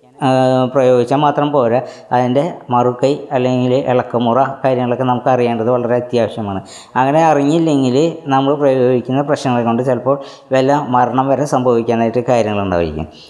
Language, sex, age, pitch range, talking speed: Malayalam, female, 20-39, 120-135 Hz, 110 wpm